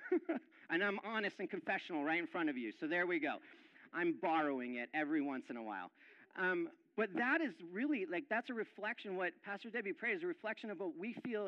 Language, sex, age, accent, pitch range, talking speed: English, male, 40-59, American, 200-305 Hz, 225 wpm